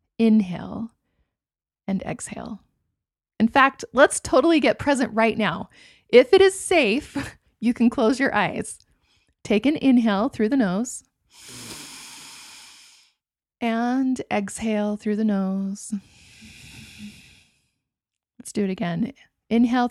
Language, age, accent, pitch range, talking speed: English, 20-39, American, 195-235 Hz, 110 wpm